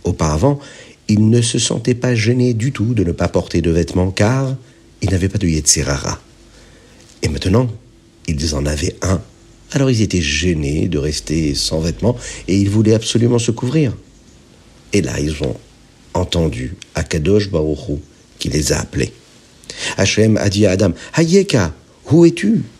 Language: French